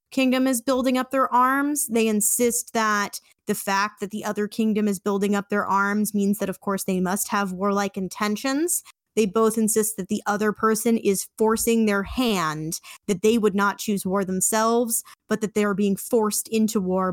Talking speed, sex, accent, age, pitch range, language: 195 wpm, female, American, 20-39, 195-225 Hz, English